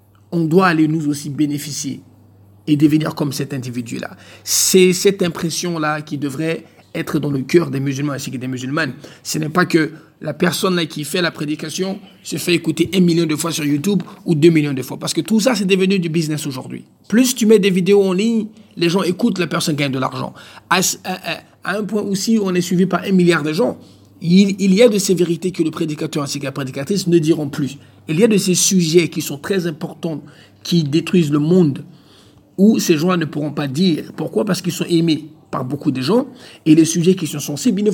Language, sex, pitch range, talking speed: English, male, 145-185 Hz, 225 wpm